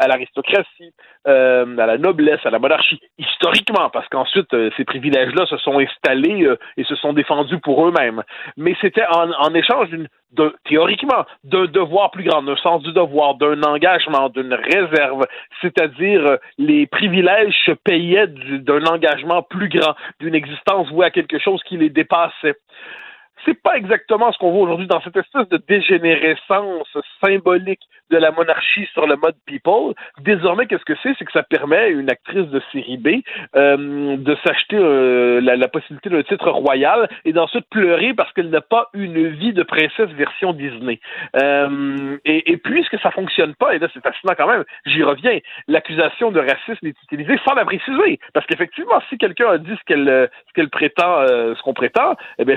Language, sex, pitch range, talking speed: French, male, 145-200 Hz, 185 wpm